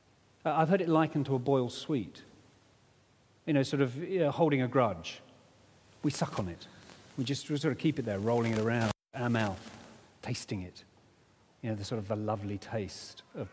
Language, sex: English, male